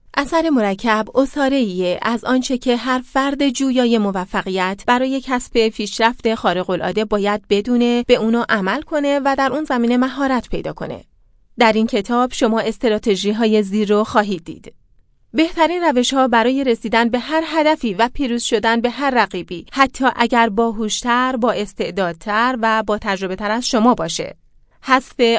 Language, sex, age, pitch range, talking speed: Persian, female, 30-49, 210-260 Hz, 155 wpm